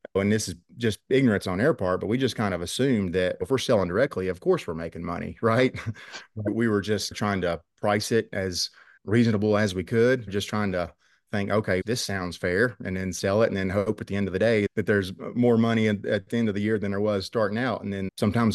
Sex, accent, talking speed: male, American, 250 wpm